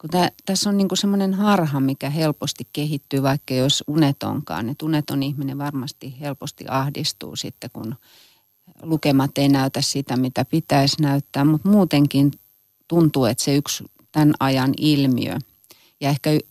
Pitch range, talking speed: 140-175 Hz, 140 wpm